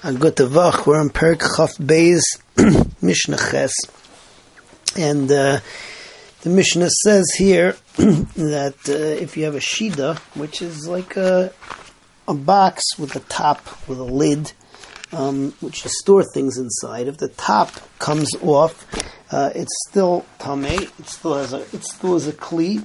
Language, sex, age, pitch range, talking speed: English, male, 40-59, 140-175 Hz, 145 wpm